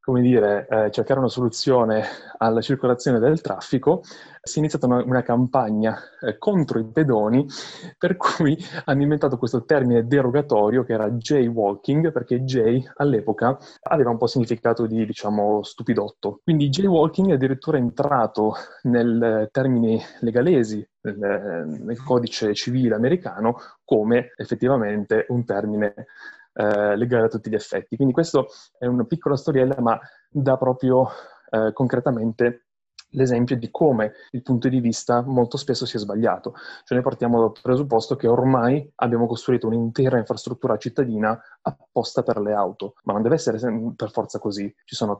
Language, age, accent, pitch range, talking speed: Italian, 20-39, native, 115-130 Hz, 145 wpm